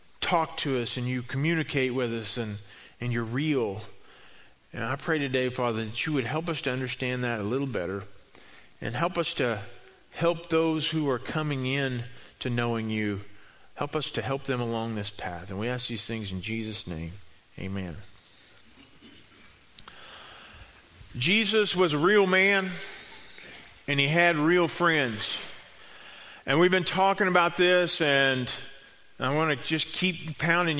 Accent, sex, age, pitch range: American, male, 40-59, 130-175 Hz